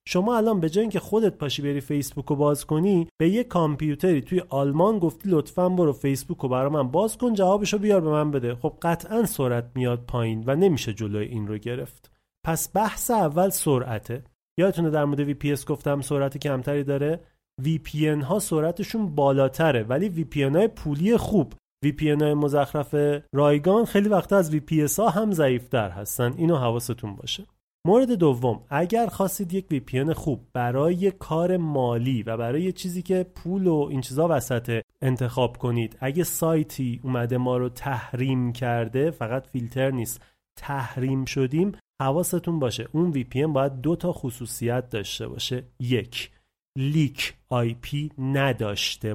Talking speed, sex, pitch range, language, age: 160 wpm, male, 125-170 Hz, Persian, 30-49